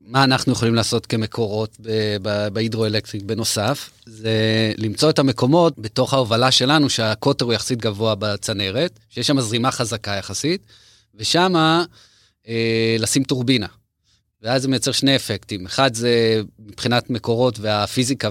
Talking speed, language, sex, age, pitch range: 130 wpm, Hebrew, male, 30-49, 110-130 Hz